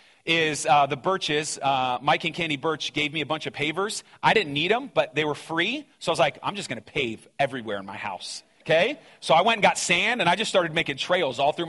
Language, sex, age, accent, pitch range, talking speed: English, male, 30-49, American, 150-215 Hz, 260 wpm